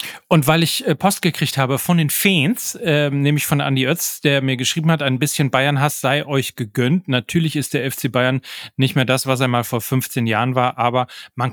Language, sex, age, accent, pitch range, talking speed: German, male, 30-49, German, 125-145 Hz, 215 wpm